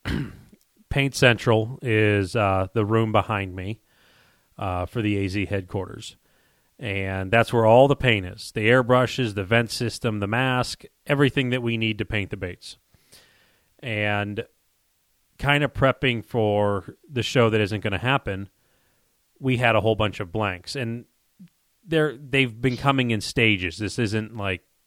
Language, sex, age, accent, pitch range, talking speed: English, male, 30-49, American, 100-120 Hz, 160 wpm